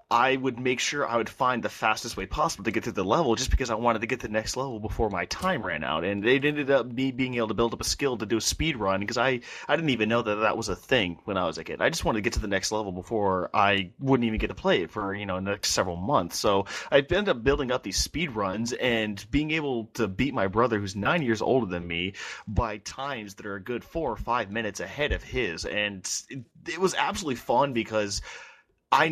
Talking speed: 270 wpm